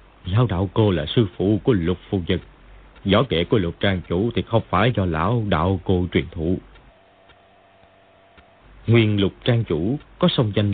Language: Vietnamese